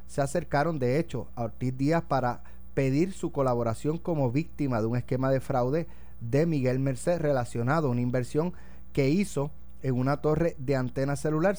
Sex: male